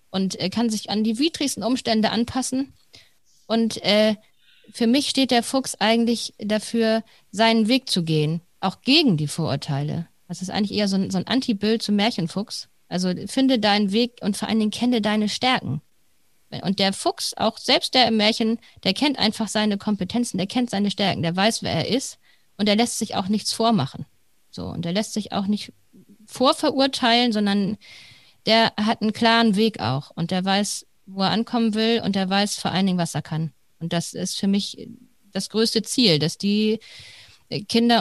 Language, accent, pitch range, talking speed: German, German, 190-230 Hz, 190 wpm